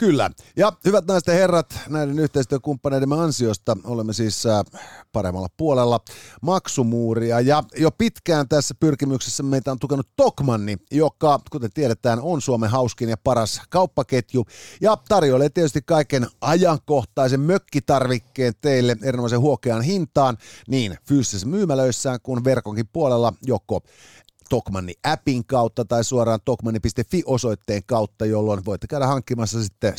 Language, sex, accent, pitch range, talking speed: Finnish, male, native, 110-140 Hz, 120 wpm